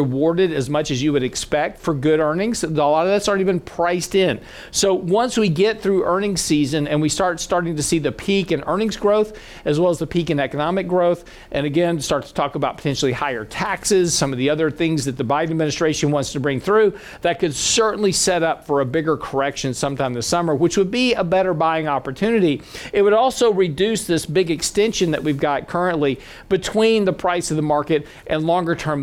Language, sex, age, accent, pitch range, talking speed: English, male, 50-69, American, 150-195 Hz, 215 wpm